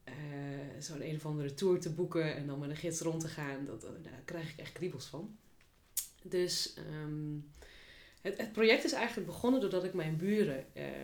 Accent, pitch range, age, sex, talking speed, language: Dutch, 140-180 Hz, 20-39, female, 200 wpm, Dutch